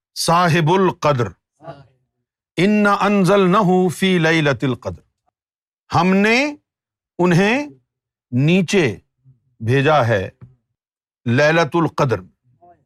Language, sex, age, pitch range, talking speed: Urdu, male, 50-69, 135-195 Hz, 75 wpm